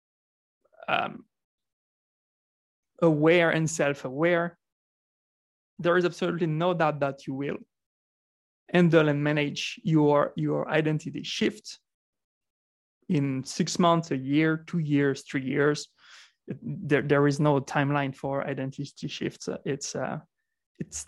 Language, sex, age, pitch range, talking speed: English, male, 20-39, 140-170 Hz, 110 wpm